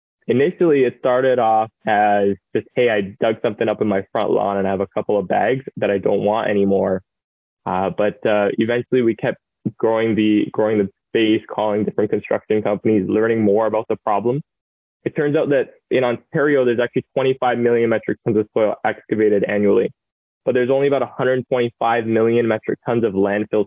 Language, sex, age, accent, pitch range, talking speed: English, male, 20-39, American, 105-120 Hz, 185 wpm